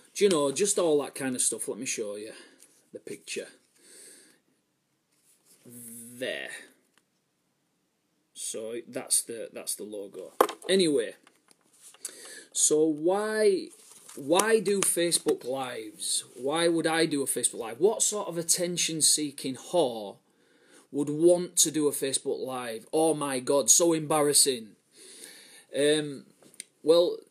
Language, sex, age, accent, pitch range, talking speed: English, male, 30-49, British, 135-215 Hz, 120 wpm